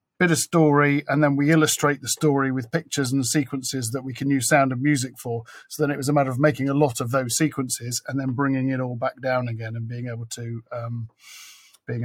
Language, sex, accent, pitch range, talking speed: English, male, British, 130-155 Hz, 240 wpm